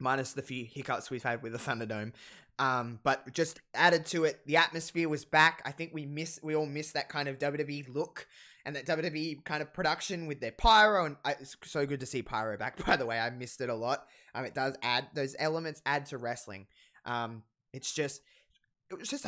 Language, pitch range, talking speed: English, 130-175 Hz, 220 wpm